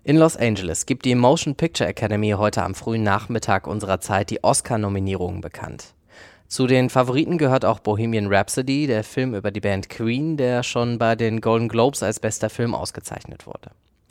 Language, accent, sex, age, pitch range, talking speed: German, German, male, 20-39, 105-130 Hz, 175 wpm